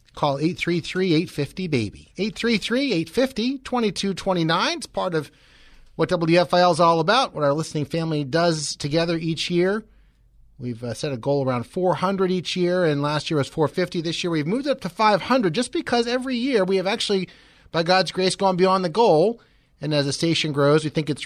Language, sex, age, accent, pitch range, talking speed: English, male, 30-49, American, 135-185 Hz, 175 wpm